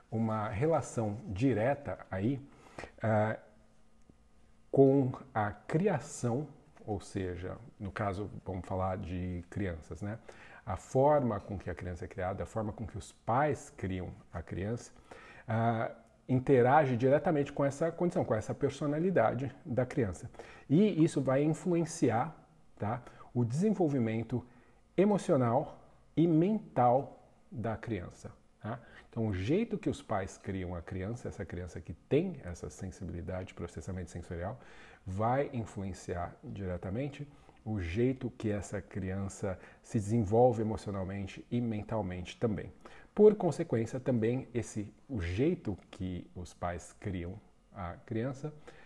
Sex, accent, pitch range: male, Brazilian, 95-135 Hz